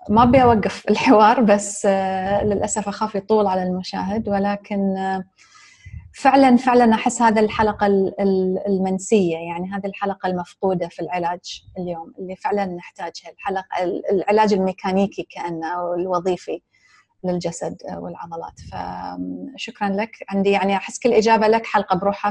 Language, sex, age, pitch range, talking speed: English, female, 30-49, 185-210 Hz, 115 wpm